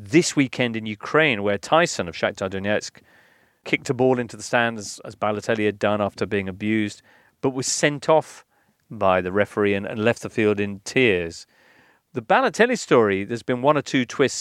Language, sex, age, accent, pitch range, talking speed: English, male, 40-59, British, 105-135 Hz, 185 wpm